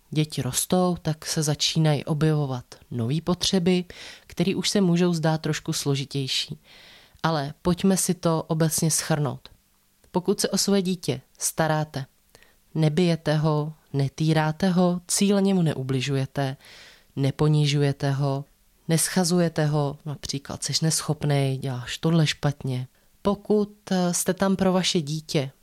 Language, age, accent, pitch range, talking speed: Czech, 20-39, native, 150-180 Hz, 115 wpm